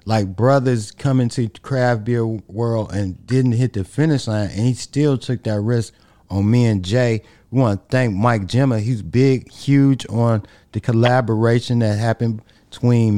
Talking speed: 180 wpm